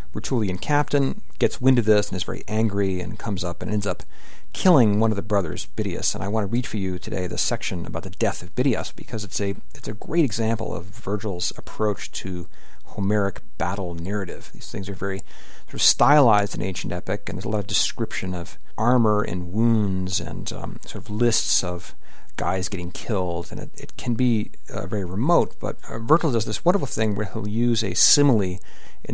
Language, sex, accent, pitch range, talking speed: English, male, American, 95-115 Hz, 210 wpm